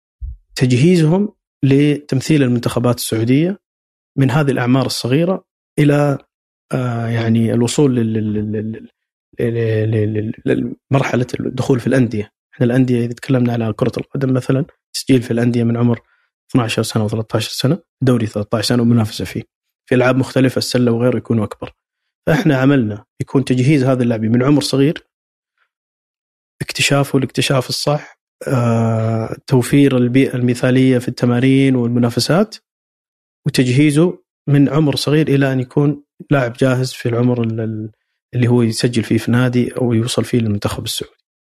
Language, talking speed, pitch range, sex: Arabic, 120 wpm, 115-135 Hz, male